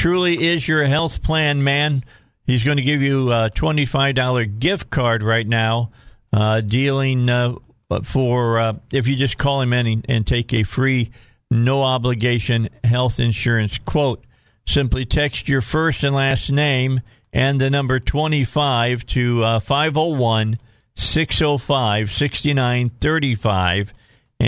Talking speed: 125 wpm